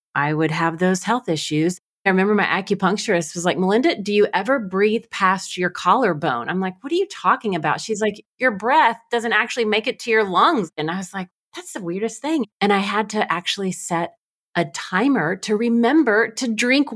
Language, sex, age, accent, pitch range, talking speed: English, female, 30-49, American, 175-235 Hz, 205 wpm